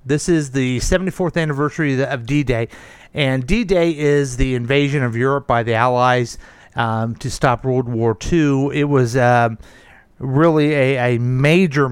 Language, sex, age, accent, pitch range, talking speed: English, male, 40-59, American, 125-145 Hz, 150 wpm